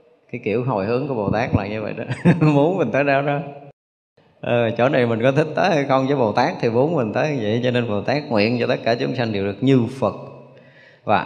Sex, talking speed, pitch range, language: male, 240 wpm, 120-155 Hz, Vietnamese